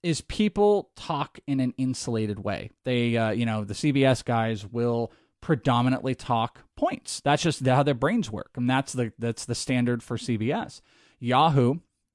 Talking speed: 160 wpm